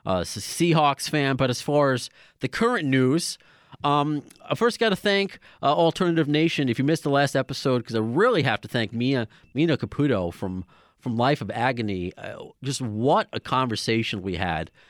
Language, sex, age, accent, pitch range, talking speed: English, male, 30-49, American, 110-155 Hz, 190 wpm